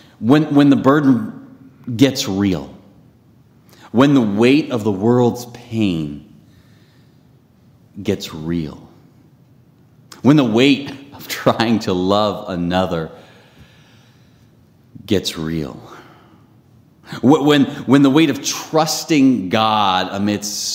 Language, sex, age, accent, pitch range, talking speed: English, male, 30-49, American, 100-135 Hz, 95 wpm